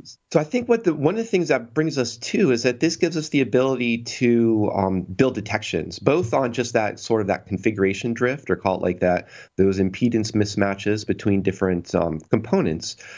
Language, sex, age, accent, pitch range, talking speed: English, male, 30-49, American, 95-120 Hz, 205 wpm